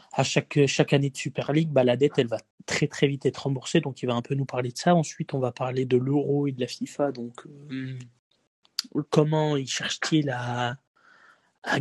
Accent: French